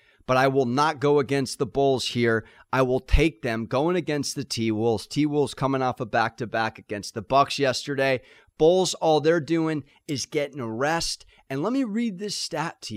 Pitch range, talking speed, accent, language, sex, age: 120-165 Hz, 190 wpm, American, English, male, 30-49